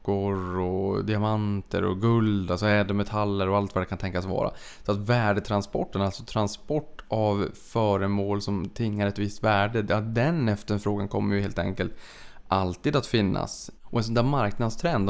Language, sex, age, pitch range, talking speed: Swedish, male, 20-39, 100-115 Hz, 160 wpm